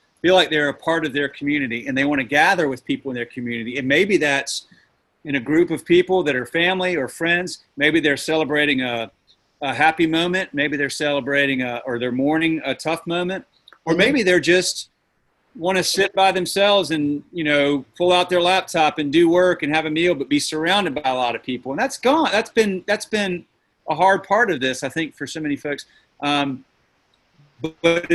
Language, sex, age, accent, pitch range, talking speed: English, male, 40-59, American, 135-170 Hz, 210 wpm